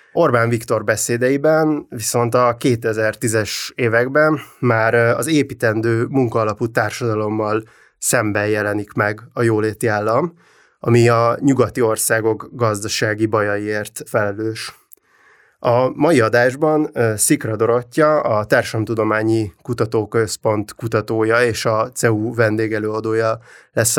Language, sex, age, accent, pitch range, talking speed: English, male, 20-39, Finnish, 110-125 Hz, 100 wpm